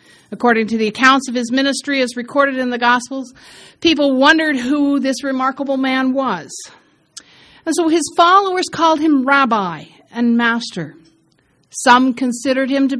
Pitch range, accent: 220-265 Hz, American